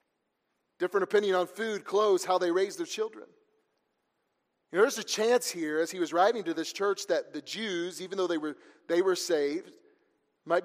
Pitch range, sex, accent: 170-270 Hz, male, American